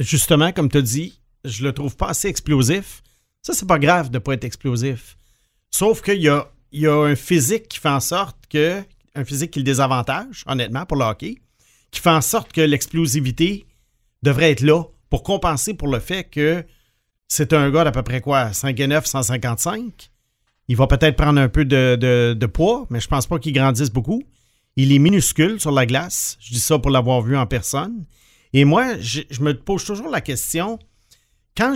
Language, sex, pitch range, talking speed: English, male, 130-170 Hz, 200 wpm